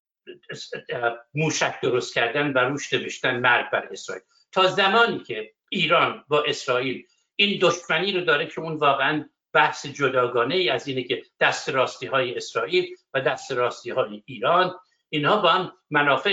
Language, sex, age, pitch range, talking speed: Persian, male, 60-79, 135-225 Hz, 145 wpm